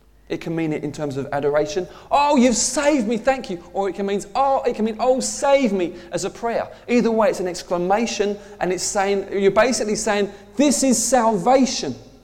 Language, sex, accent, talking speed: English, male, British, 205 wpm